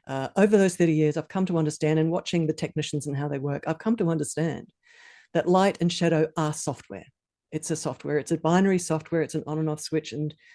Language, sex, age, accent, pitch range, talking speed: English, female, 50-69, Australian, 155-195 Hz, 235 wpm